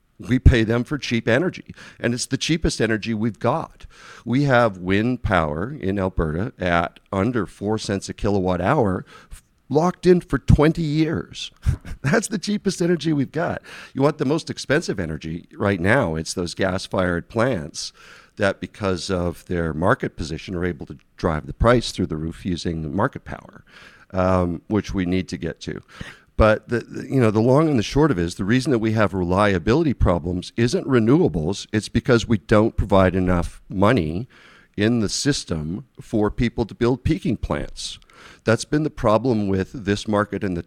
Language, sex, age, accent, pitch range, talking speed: English, male, 50-69, American, 90-120 Hz, 180 wpm